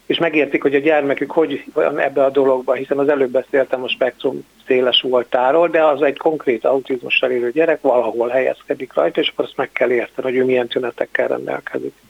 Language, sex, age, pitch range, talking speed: Hungarian, male, 60-79, 130-160 Hz, 195 wpm